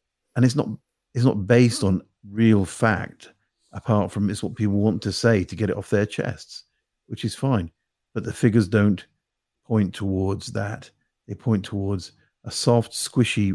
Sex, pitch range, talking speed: male, 95-110 Hz, 175 wpm